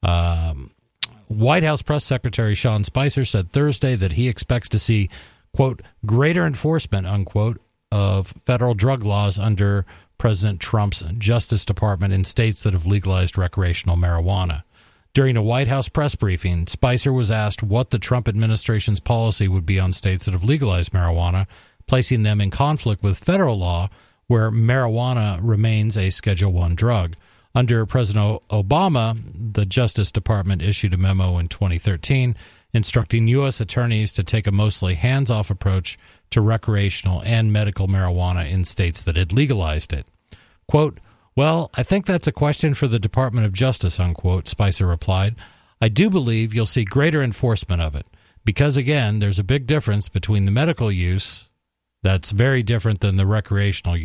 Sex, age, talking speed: male, 40-59, 155 wpm